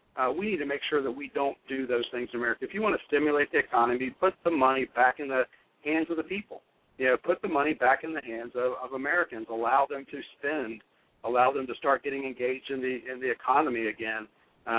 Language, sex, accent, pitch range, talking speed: English, male, American, 120-155 Hz, 245 wpm